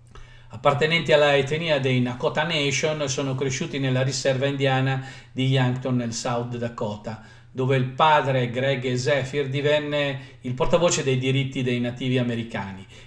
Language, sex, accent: Italian, male, native